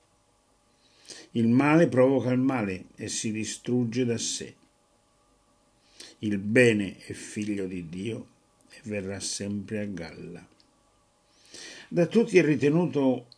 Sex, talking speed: male, 110 wpm